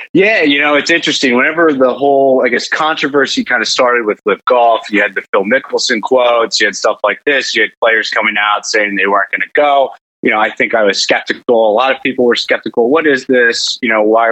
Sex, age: male, 30-49